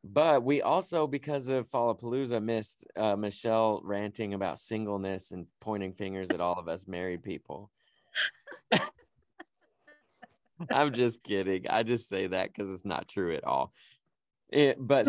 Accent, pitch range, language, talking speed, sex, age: American, 95-120 Hz, English, 140 wpm, male, 20-39